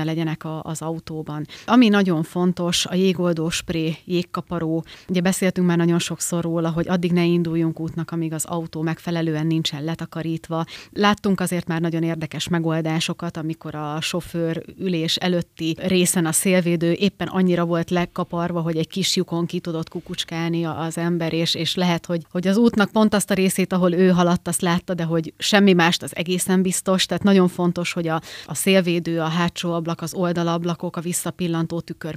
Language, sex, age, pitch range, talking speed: Hungarian, female, 30-49, 165-180 Hz, 170 wpm